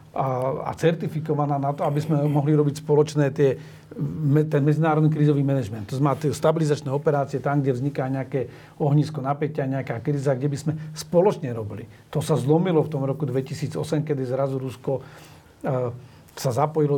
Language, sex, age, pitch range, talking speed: Slovak, male, 40-59, 135-155 Hz, 155 wpm